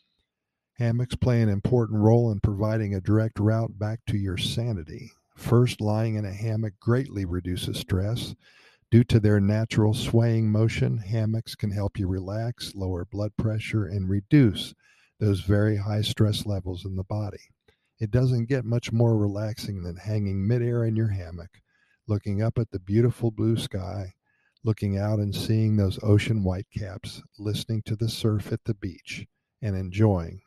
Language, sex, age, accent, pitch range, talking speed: English, male, 50-69, American, 100-115 Hz, 160 wpm